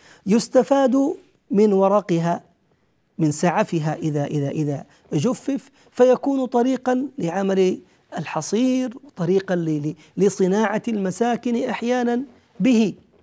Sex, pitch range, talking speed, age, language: male, 175-255 Hz, 80 wpm, 40-59, Arabic